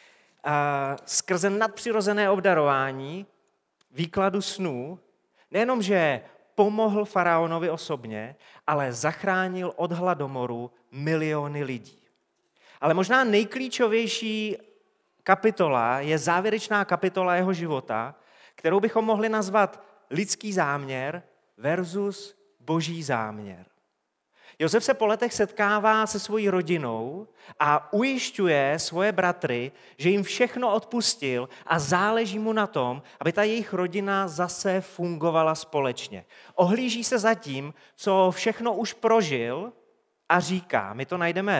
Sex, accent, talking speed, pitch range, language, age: male, native, 110 wpm, 150-210 Hz, Czech, 30-49